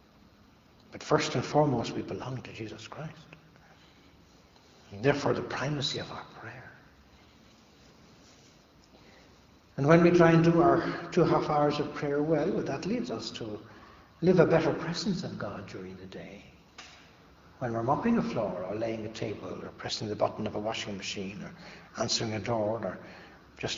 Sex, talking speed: male, 165 wpm